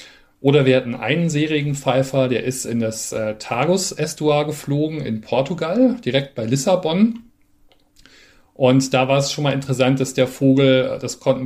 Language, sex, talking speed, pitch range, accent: German, male, 160 wpm, 115-135 Hz, German